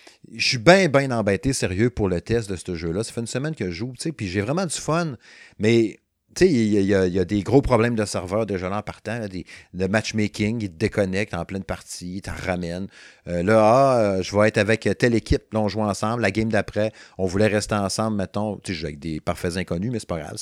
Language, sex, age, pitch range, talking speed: French, male, 30-49, 95-115 Hz, 255 wpm